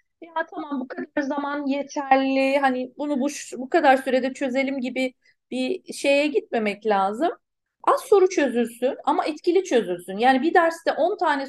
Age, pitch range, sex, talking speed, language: 40-59, 235-285 Hz, female, 150 wpm, Turkish